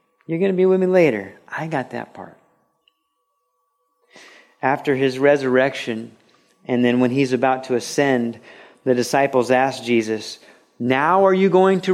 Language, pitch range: English, 130-185 Hz